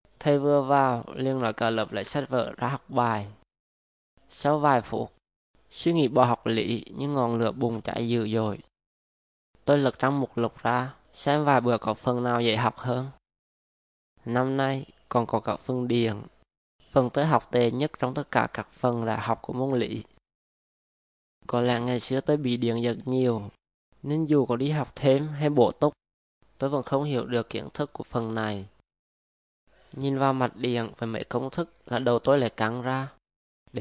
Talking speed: 190 wpm